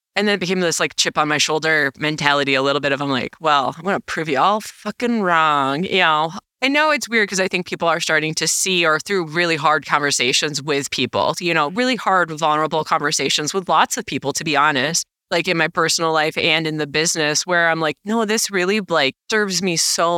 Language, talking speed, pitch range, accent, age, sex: English, 230 wpm, 150-190 Hz, American, 20-39, female